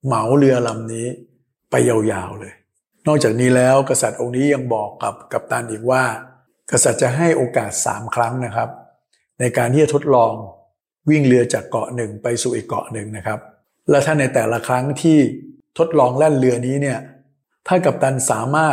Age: 60-79